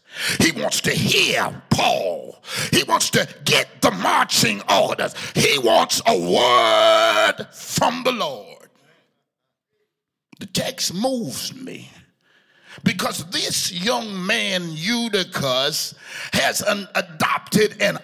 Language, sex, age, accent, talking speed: English, male, 50-69, American, 105 wpm